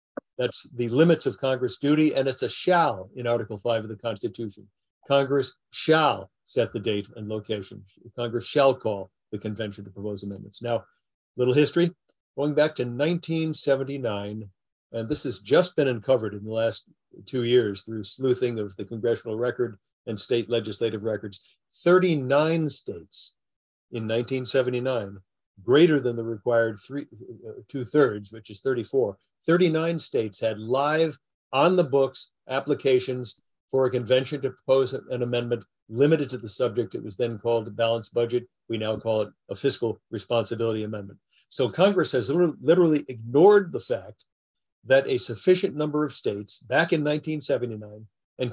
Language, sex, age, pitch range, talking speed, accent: English, male, 50-69, 110-150 Hz, 155 wpm, American